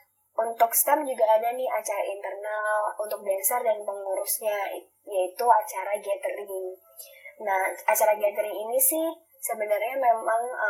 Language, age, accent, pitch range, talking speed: Indonesian, 20-39, native, 195-275 Hz, 120 wpm